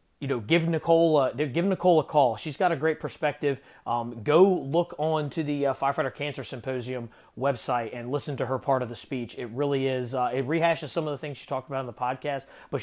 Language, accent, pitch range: English, American, 120-150 Hz